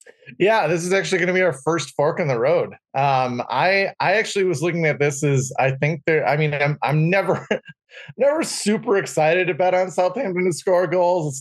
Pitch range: 140-185 Hz